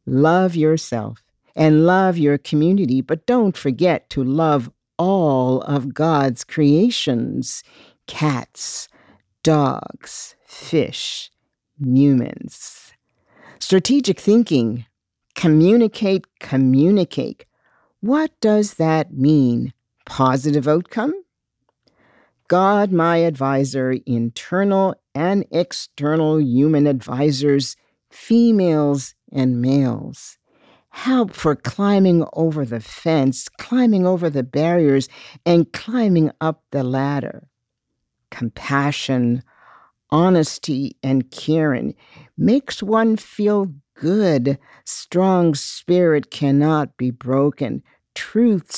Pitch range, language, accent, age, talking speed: 135-180 Hz, English, American, 50-69, 85 wpm